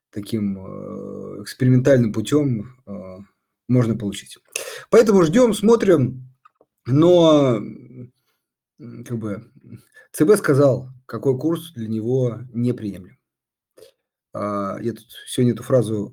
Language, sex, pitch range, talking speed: Russian, male, 115-150 Hz, 95 wpm